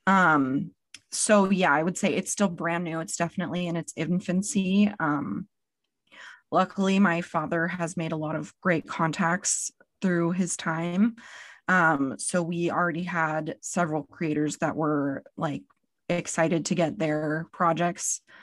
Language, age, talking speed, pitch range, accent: English, 20-39, 145 wpm, 165-195 Hz, American